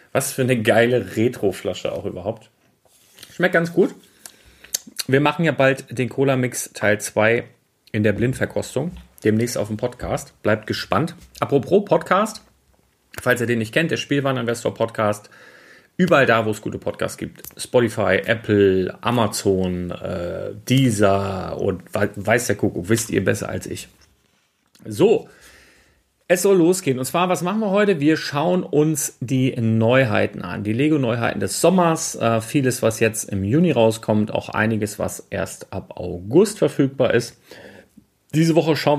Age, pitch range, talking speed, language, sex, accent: 40-59, 105-145 Hz, 145 wpm, German, male, German